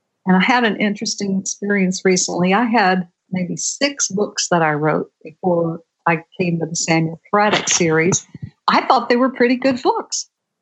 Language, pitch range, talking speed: English, 180-255 Hz, 170 wpm